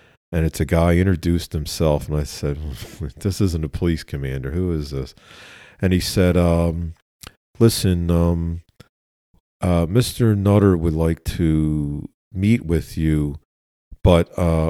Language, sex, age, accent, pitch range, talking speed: English, male, 50-69, American, 75-90 Hz, 135 wpm